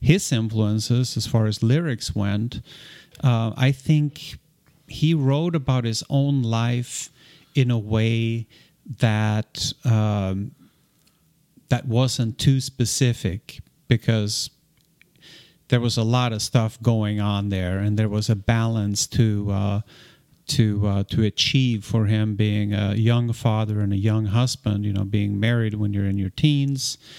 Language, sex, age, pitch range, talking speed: English, male, 40-59, 105-130 Hz, 145 wpm